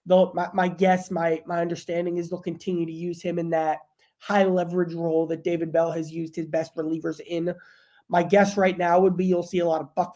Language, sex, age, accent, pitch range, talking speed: English, male, 20-39, American, 165-185 Hz, 225 wpm